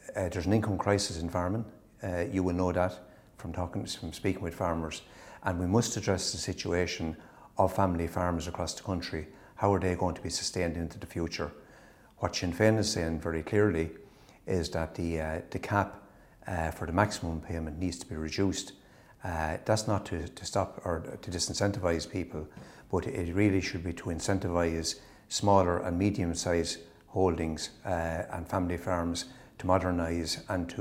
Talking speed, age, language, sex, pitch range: 175 wpm, 60-79, English, male, 85-100 Hz